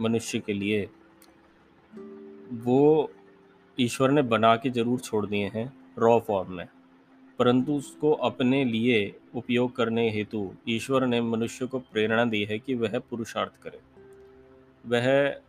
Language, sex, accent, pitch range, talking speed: Hindi, male, native, 100-125 Hz, 130 wpm